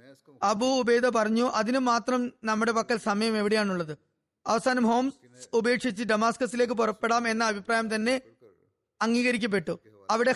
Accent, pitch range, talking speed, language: native, 220-255 Hz, 110 wpm, Malayalam